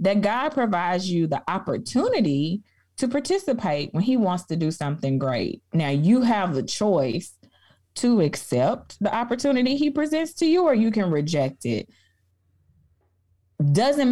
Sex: female